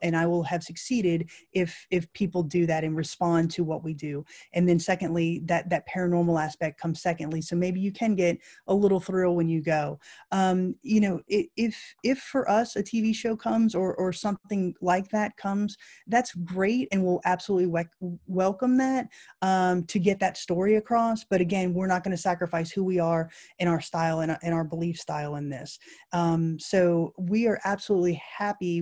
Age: 20-39